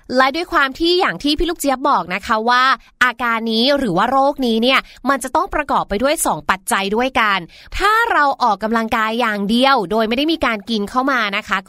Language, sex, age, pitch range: Thai, female, 20-39, 225-300 Hz